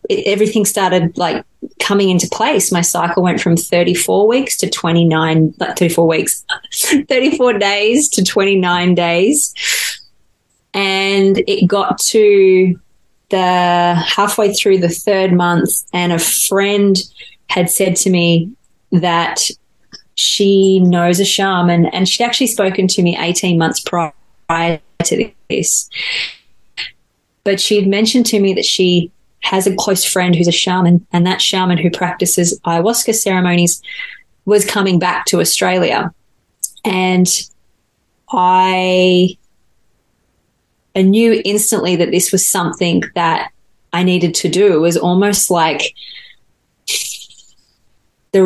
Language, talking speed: English, 130 wpm